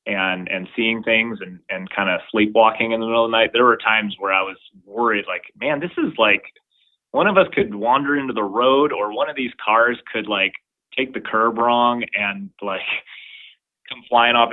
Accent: American